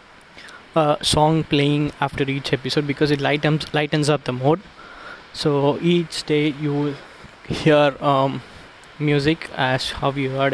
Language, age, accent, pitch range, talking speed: Tamil, 20-39, native, 140-155 Hz, 140 wpm